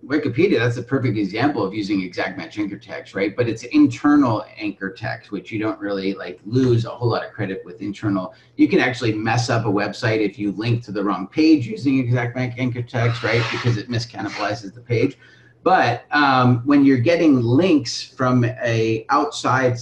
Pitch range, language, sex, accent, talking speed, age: 110-130 Hz, English, male, American, 195 wpm, 30-49